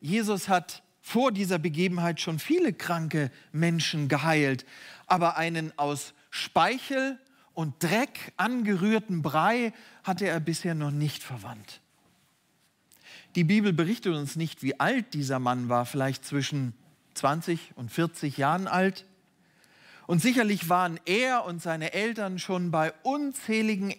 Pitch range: 155-200 Hz